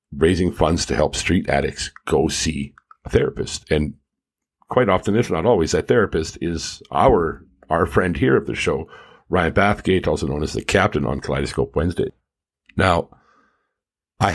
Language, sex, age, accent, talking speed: English, male, 50-69, American, 160 wpm